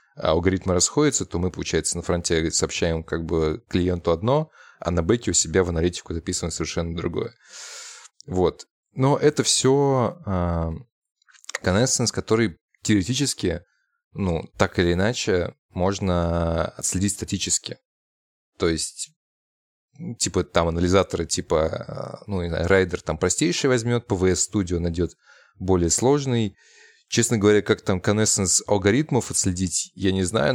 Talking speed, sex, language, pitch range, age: 120 wpm, male, Russian, 85-110 Hz, 20-39